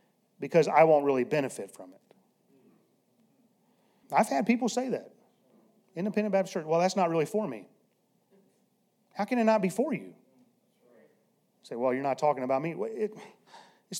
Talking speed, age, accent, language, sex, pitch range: 155 wpm, 40-59, American, English, male, 175-220 Hz